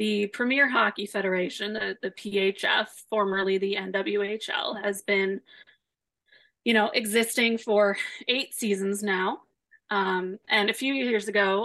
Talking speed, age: 130 wpm, 20-39